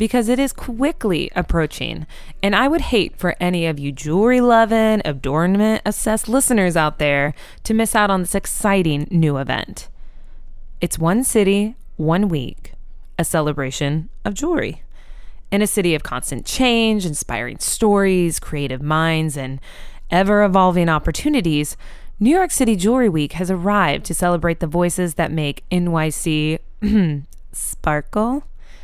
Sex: female